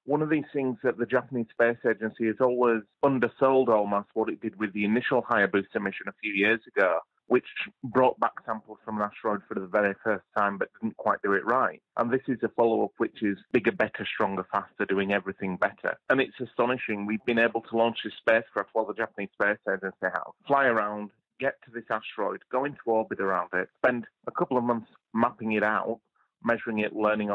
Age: 30-49